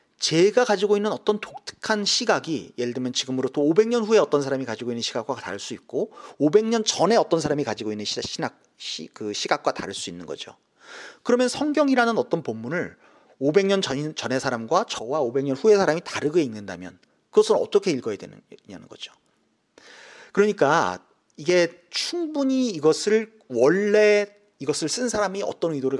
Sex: male